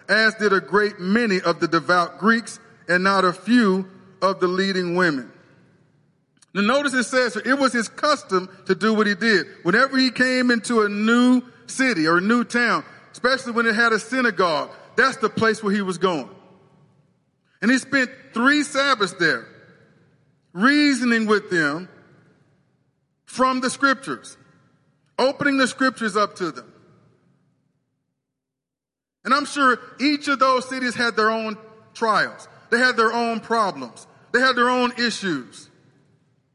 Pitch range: 185-255 Hz